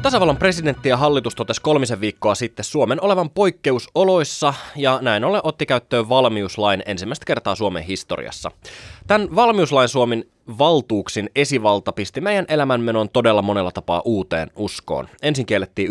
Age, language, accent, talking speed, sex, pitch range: 20-39, Finnish, native, 135 wpm, male, 105-155 Hz